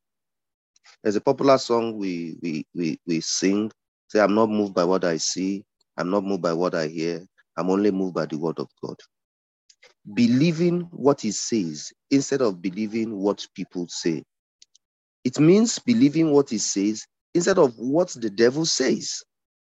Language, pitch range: English, 100-135 Hz